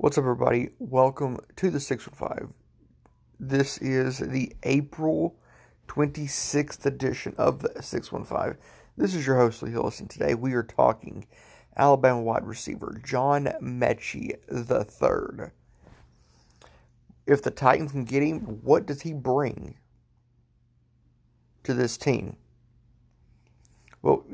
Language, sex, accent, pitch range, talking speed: English, male, American, 120-140 Hz, 115 wpm